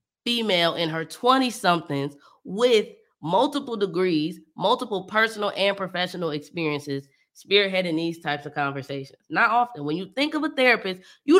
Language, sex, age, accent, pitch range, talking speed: English, female, 20-39, American, 170-285 Hz, 135 wpm